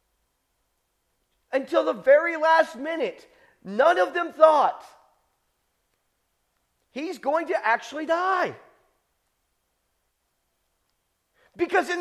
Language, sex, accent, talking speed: English, male, American, 80 wpm